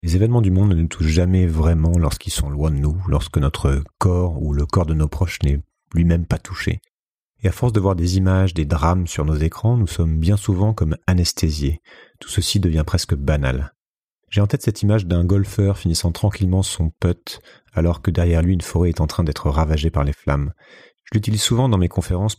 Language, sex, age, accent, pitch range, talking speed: French, male, 40-59, French, 80-100 Hz, 215 wpm